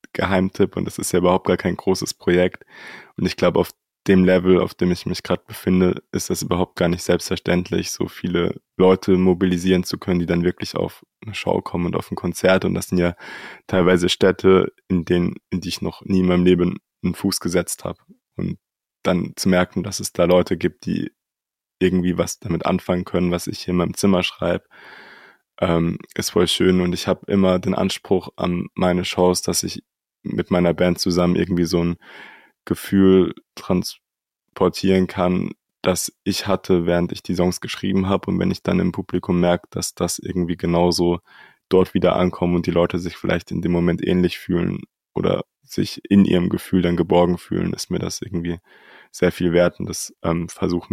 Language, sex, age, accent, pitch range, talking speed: German, male, 20-39, German, 90-95 Hz, 195 wpm